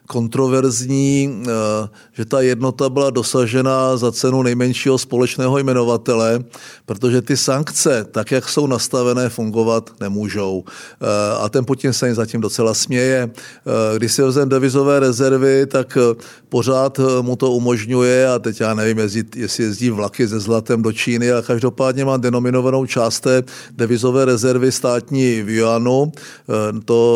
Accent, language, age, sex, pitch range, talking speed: native, Czech, 50-69, male, 120-140 Hz, 135 wpm